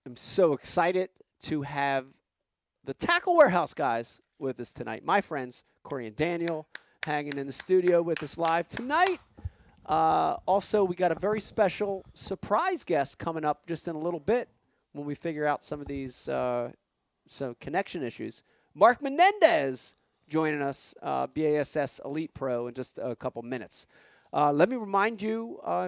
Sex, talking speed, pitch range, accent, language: male, 160 wpm, 145-200 Hz, American, English